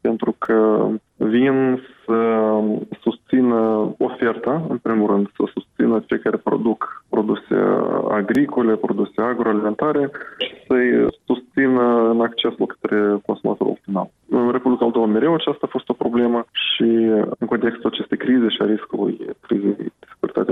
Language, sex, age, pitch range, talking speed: Romanian, male, 20-39, 110-130 Hz, 130 wpm